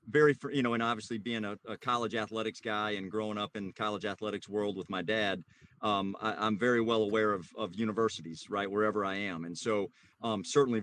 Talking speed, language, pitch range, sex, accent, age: 210 wpm, English, 105-130 Hz, male, American, 40-59